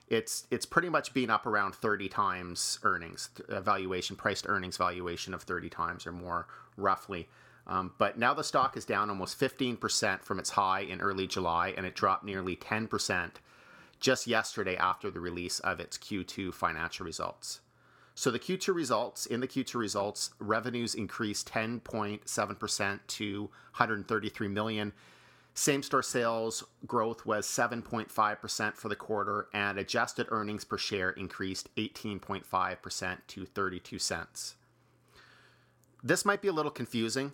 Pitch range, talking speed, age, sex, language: 95-120 Hz, 145 wpm, 40-59, male, English